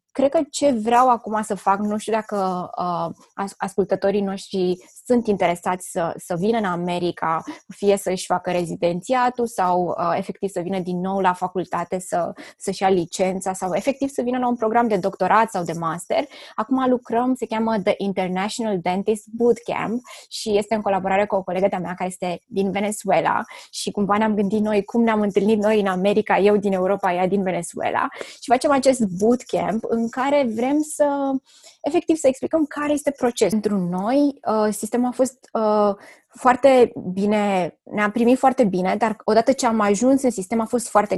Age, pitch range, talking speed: 20-39, 190-245 Hz, 180 wpm